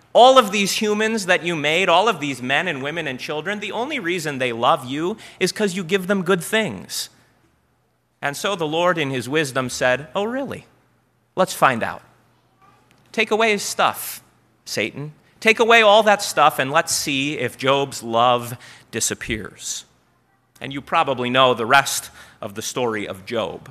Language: English